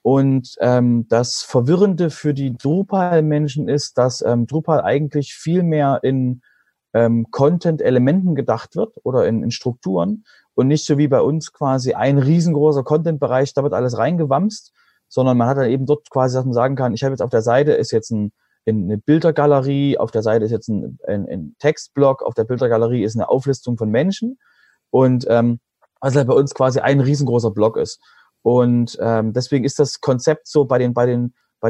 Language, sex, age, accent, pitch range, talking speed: German, male, 30-49, German, 120-150 Hz, 180 wpm